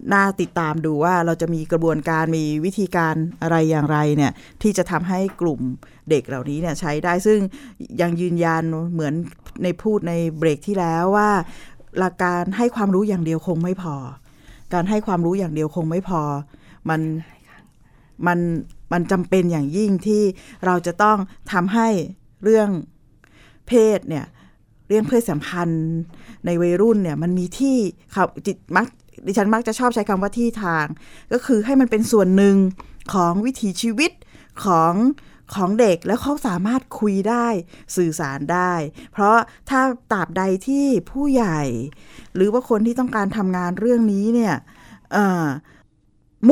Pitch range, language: 160-215 Hz, Thai